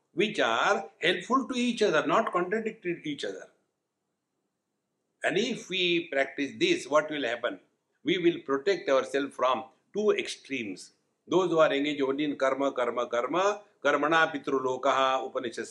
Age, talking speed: 60-79, 150 wpm